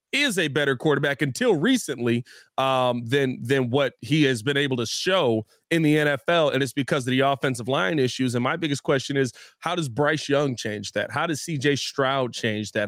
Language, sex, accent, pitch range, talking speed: English, male, American, 125-150 Hz, 205 wpm